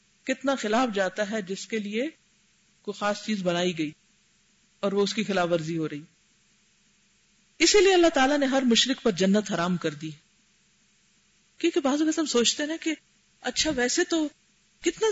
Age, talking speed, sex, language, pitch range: 50-69, 170 wpm, female, Urdu, 185-235 Hz